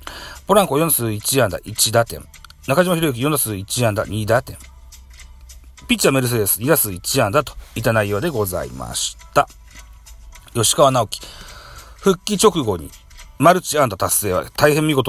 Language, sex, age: Japanese, male, 40-59